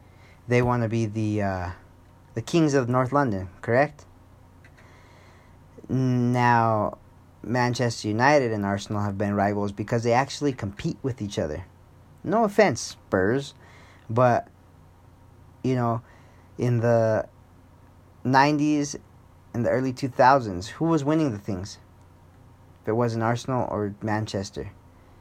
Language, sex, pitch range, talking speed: English, male, 90-120 Hz, 120 wpm